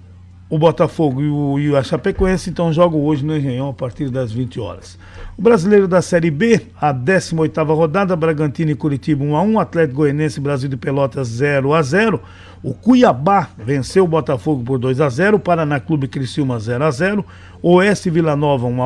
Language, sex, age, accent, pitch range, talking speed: Portuguese, male, 50-69, Brazilian, 135-180 Hz, 160 wpm